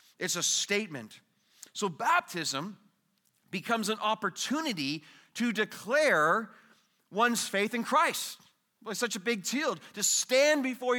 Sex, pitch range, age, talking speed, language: male, 180-230 Hz, 30-49, 120 wpm, English